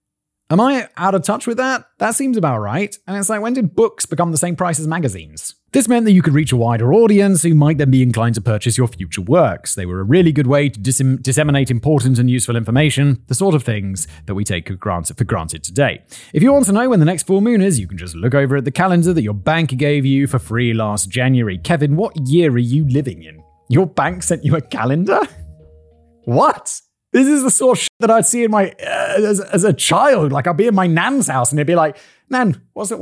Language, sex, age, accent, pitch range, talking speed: English, male, 30-49, British, 125-205 Hz, 245 wpm